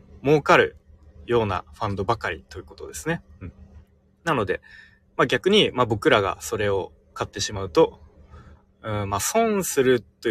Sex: male